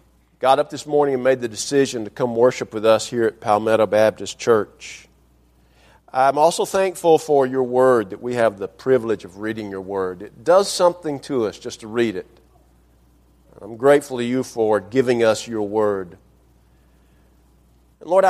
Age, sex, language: 50-69, male, English